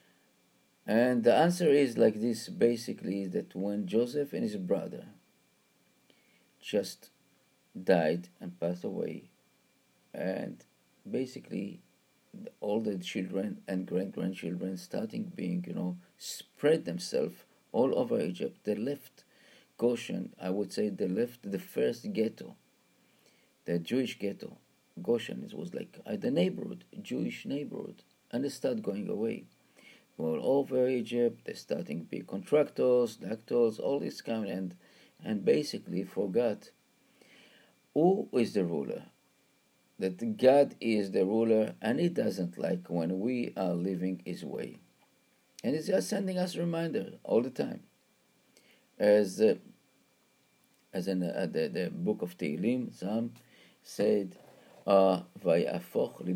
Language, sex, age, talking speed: English, male, 50-69, 125 wpm